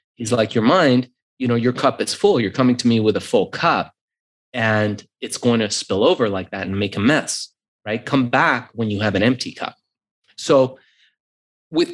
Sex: male